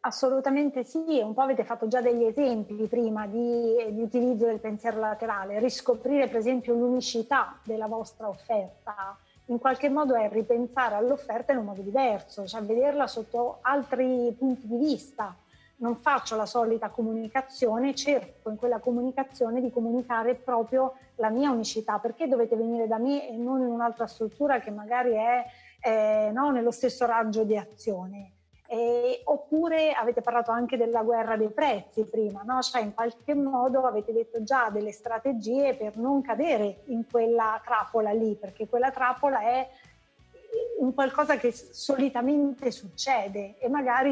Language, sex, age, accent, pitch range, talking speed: Italian, female, 30-49, native, 225-265 Hz, 155 wpm